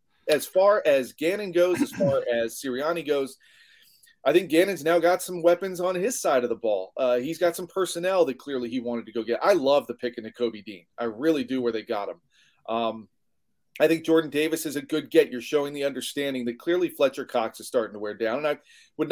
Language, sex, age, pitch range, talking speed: English, male, 40-59, 120-165 Hz, 230 wpm